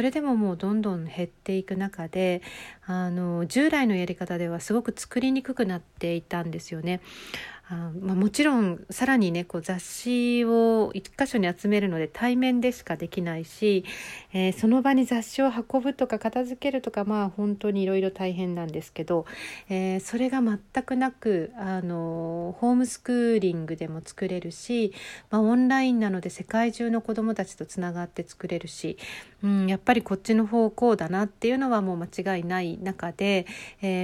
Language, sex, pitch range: Japanese, female, 175-230 Hz